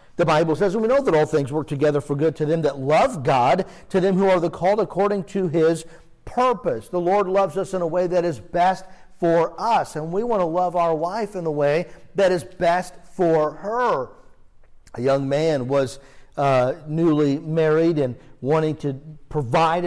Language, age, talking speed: English, 50-69, 200 wpm